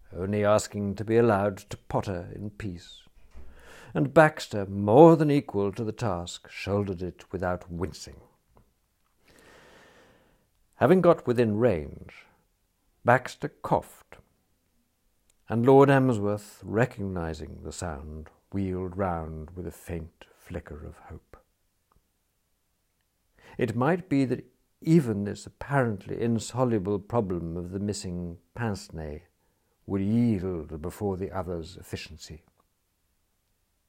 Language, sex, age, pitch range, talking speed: English, male, 60-79, 90-115 Hz, 105 wpm